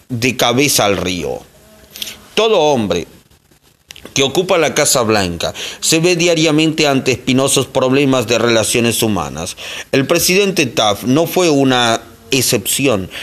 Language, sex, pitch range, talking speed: Spanish, male, 120-155 Hz, 125 wpm